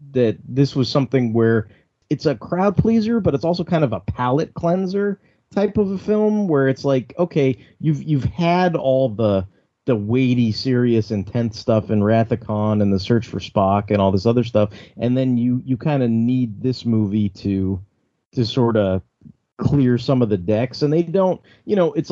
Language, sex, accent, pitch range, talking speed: English, male, American, 100-135 Hz, 195 wpm